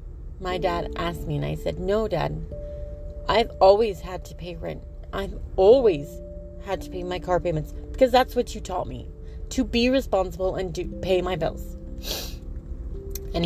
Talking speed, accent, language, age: 170 wpm, American, English, 30-49